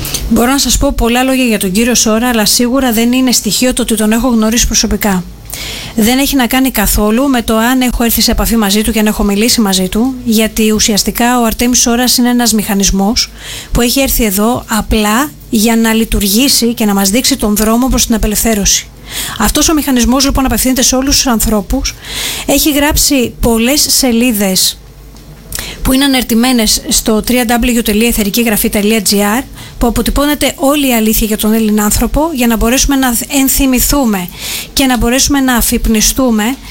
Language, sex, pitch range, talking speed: Greek, female, 220-265 Hz, 170 wpm